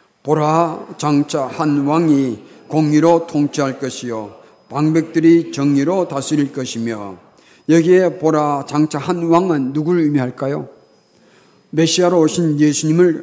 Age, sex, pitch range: 50-69, male, 130-165 Hz